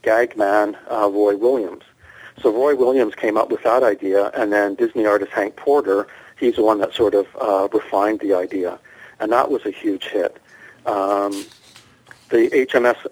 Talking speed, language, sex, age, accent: 175 wpm, English, male, 50-69, American